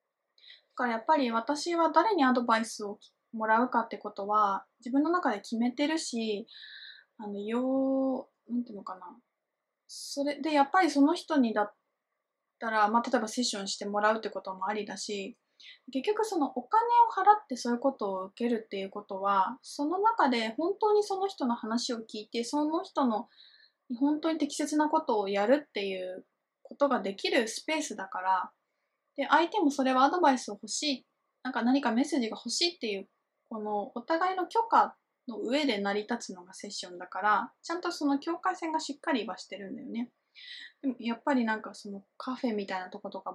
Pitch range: 210-295 Hz